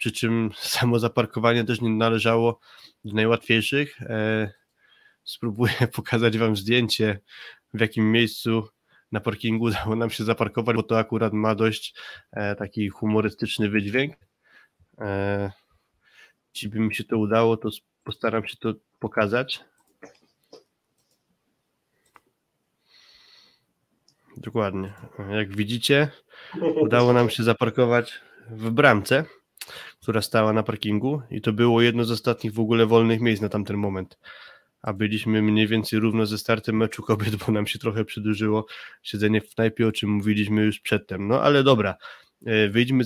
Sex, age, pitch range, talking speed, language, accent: male, 20-39, 110-120 Hz, 130 wpm, Polish, native